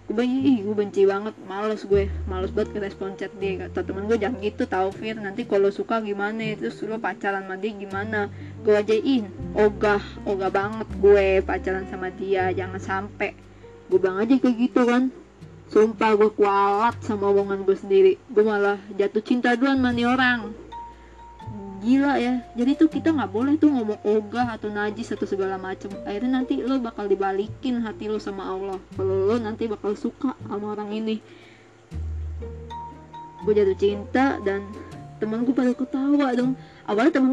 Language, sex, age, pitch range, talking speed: Indonesian, female, 20-39, 195-255 Hz, 160 wpm